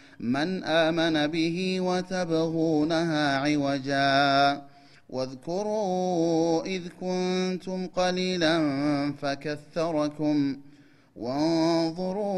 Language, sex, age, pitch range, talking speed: Amharic, male, 30-49, 140-170 Hz, 55 wpm